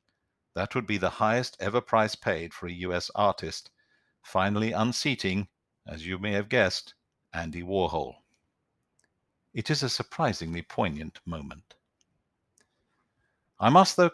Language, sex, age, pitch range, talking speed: English, male, 50-69, 95-120 Hz, 125 wpm